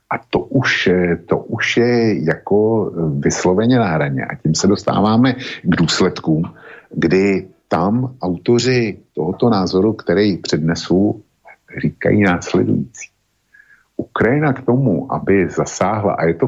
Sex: male